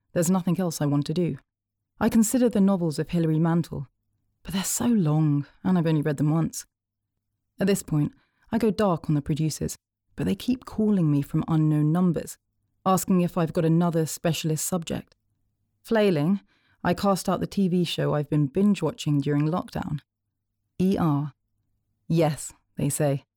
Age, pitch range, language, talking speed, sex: 30-49, 135-195 Hz, English, 165 wpm, female